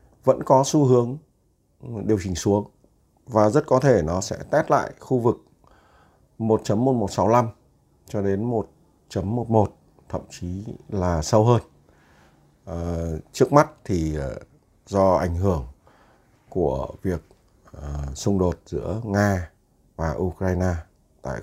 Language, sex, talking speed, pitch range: Vietnamese, male, 115 wpm, 85-115 Hz